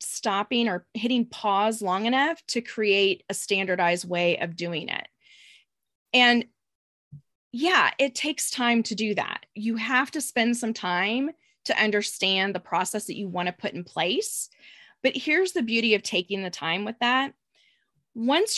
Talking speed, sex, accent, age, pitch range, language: 160 wpm, female, American, 20-39, 190-265 Hz, English